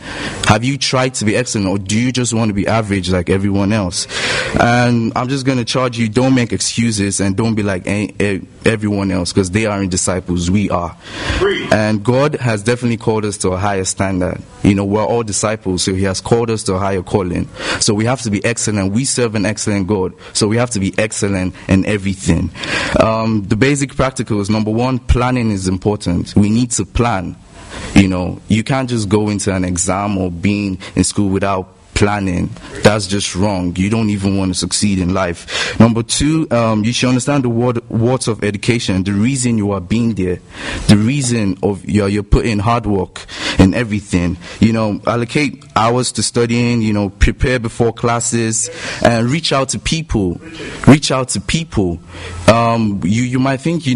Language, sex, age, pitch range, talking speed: English, male, 20-39, 95-120 Hz, 190 wpm